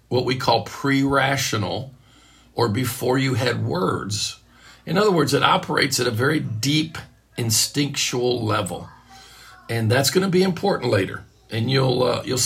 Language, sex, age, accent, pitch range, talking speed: English, male, 50-69, American, 115-140 Hz, 150 wpm